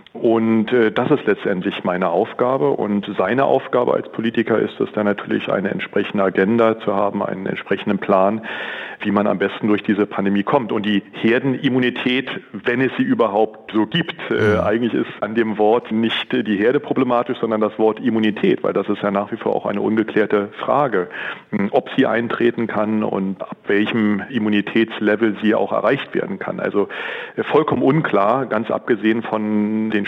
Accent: German